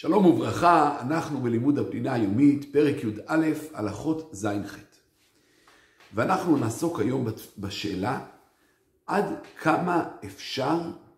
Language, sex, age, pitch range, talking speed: Hebrew, male, 50-69, 100-150 Hz, 90 wpm